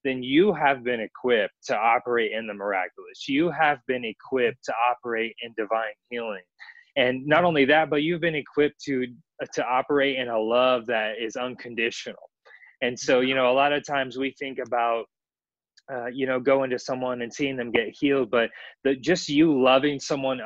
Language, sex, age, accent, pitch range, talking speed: English, male, 20-39, American, 115-135 Hz, 190 wpm